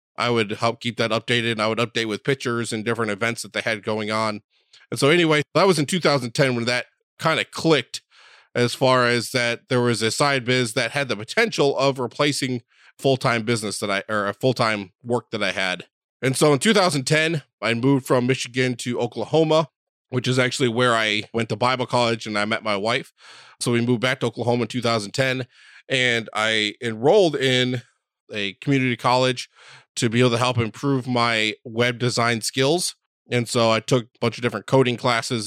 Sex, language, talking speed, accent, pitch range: male, English, 200 wpm, American, 110-130 Hz